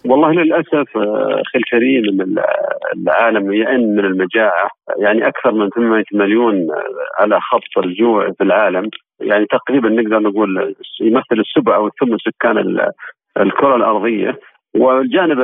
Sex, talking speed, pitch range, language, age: male, 120 wpm, 105-130 Hz, Arabic, 40-59